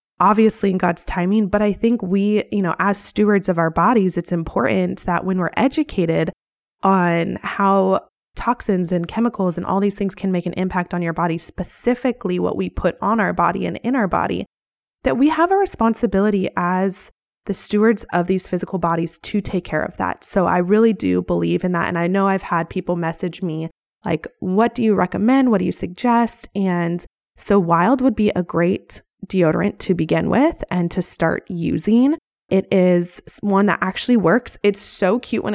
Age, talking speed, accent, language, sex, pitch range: 20-39, 190 wpm, American, English, female, 175-210 Hz